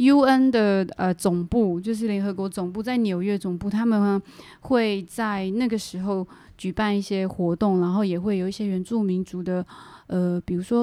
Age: 20-39